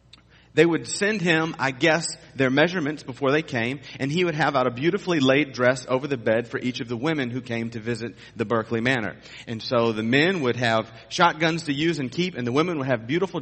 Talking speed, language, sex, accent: 235 wpm, English, male, American